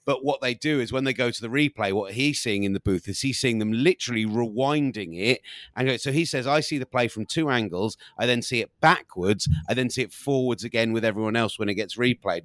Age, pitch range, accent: 30-49, 105-135 Hz, British